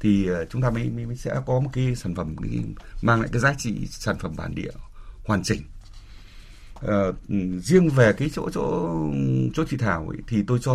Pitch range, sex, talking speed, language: 100-145 Hz, male, 195 wpm, Vietnamese